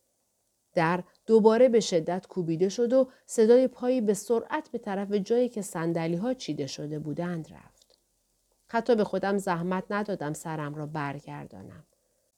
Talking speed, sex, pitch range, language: 140 wpm, female, 170-240 Hz, Persian